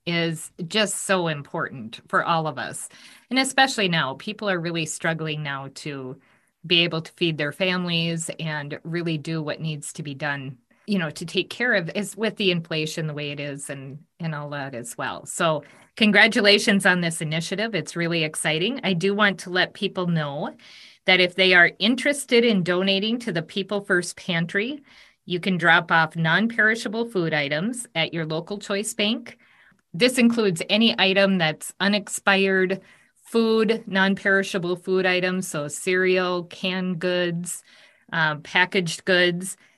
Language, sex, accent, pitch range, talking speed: English, female, American, 160-200 Hz, 160 wpm